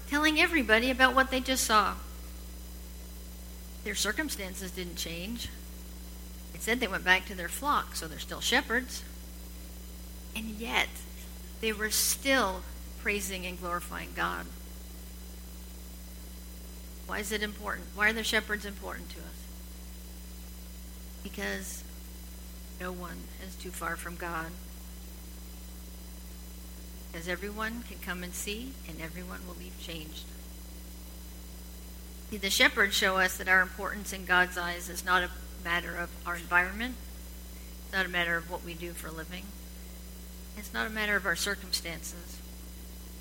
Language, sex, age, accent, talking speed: English, female, 40-59, American, 135 wpm